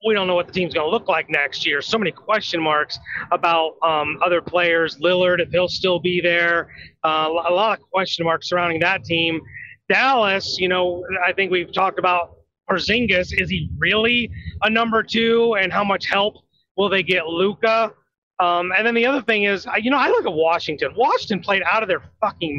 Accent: American